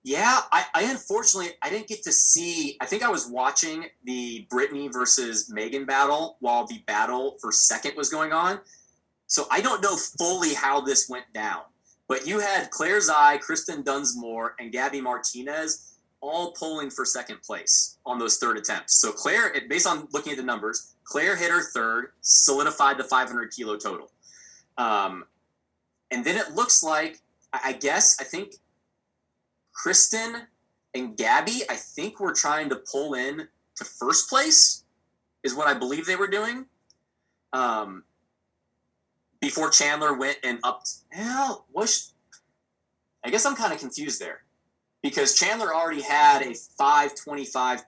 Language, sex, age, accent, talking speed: English, male, 20-39, American, 155 wpm